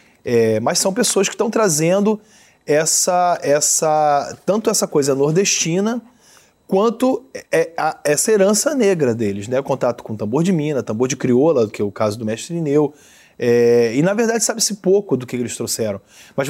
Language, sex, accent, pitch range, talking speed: Portuguese, male, Brazilian, 120-180 Hz, 155 wpm